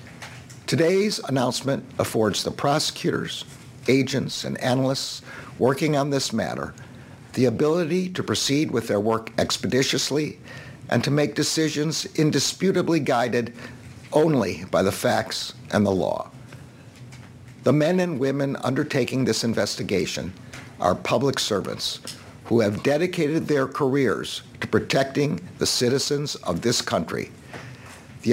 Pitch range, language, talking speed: 120-145 Hz, English, 120 wpm